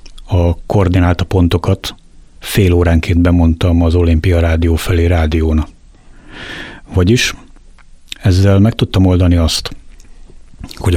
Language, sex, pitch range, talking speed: Hungarian, male, 85-95 Hz, 95 wpm